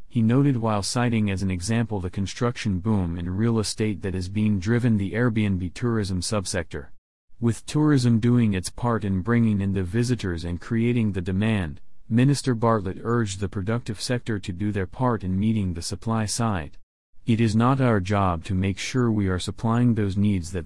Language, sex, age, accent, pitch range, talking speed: English, male, 40-59, American, 95-115 Hz, 185 wpm